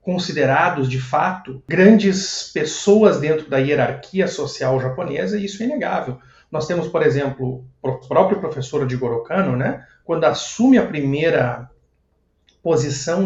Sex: male